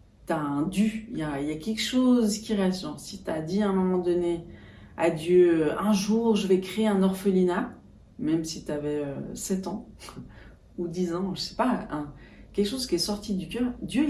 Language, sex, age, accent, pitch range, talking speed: French, female, 40-59, French, 155-195 Hz, 215 wpm